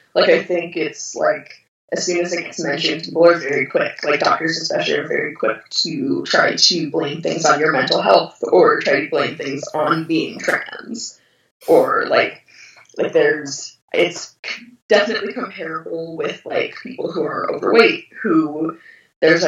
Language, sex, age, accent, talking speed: English, female, 20-39, American, 165 wpm